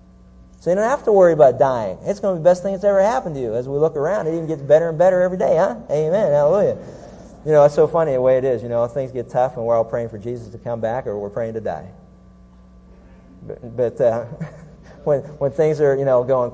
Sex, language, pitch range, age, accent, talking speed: male, English, 95-130 Hz, 40-59, American, 265 wpm